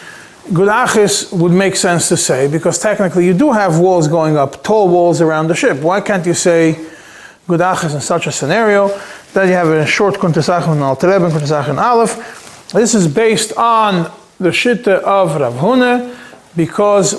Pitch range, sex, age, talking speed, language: 165-205 Hz, male, 30-49, 165 wpm, English